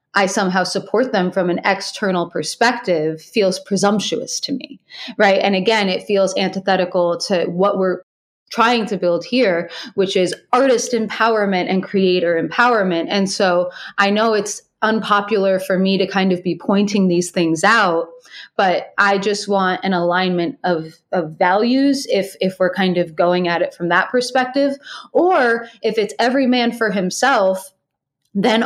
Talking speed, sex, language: 160 wpm, female, English